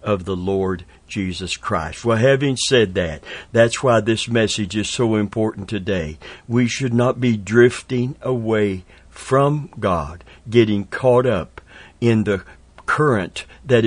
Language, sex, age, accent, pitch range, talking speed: English, male, 60-79, American, 100-125 Hz, 140 wpm